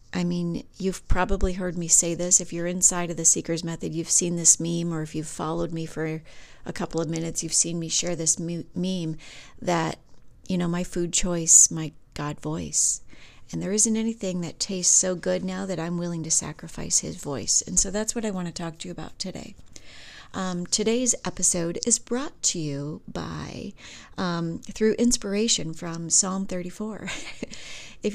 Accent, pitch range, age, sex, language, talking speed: American, 165-200 Hz, 40-59, female, English, 185 wpm